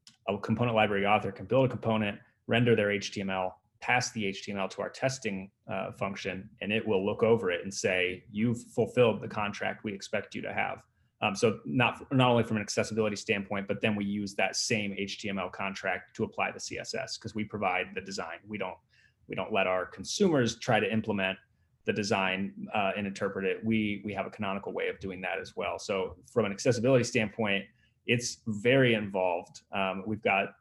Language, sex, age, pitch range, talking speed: English, male, 30-49, 100-120 Hz, 195 wpm